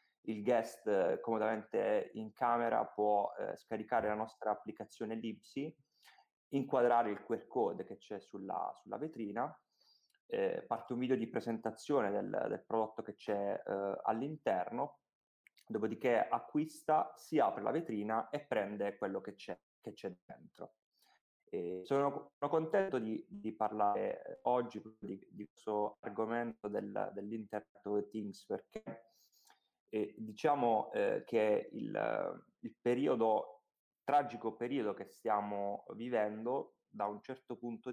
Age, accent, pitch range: 20-39, native, 105-140 Hz